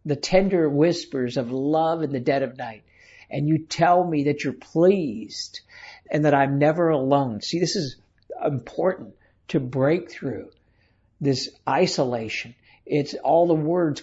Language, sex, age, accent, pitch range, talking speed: English, male, 60-79, American, 140-170 Hz, 150 wpm